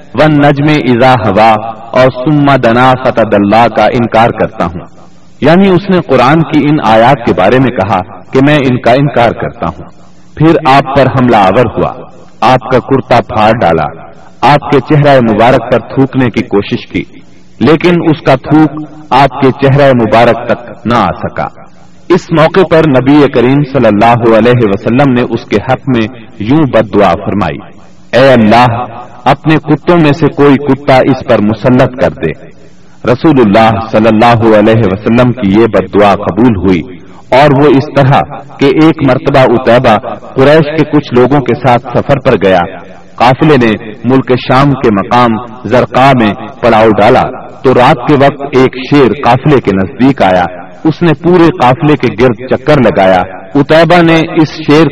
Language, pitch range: Urdu, 110-145 Hz